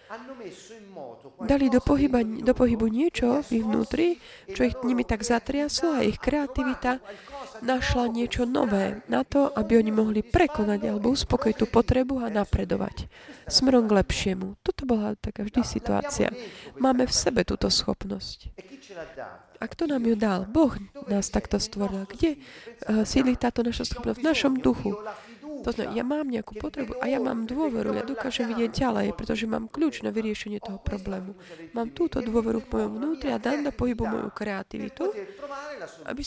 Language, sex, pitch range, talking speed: Slovak, female, 215-270 Hz, 155 wpm